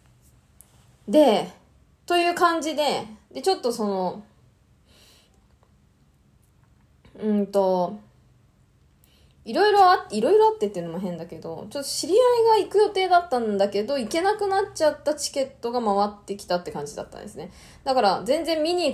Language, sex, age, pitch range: Japanese, female, 20-39, 180-270 Hz